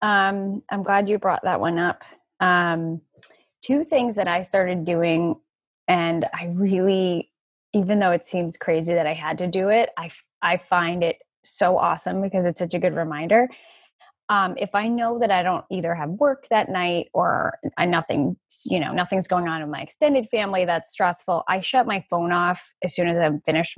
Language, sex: English, female